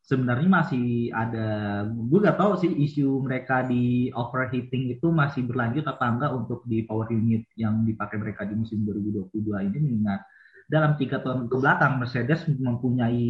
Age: 20-39